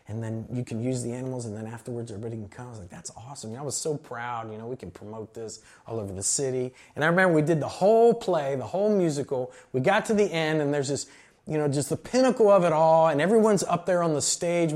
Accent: American